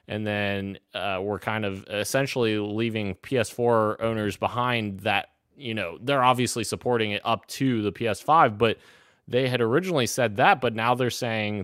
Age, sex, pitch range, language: 20-39, male, 100-120 Hz, English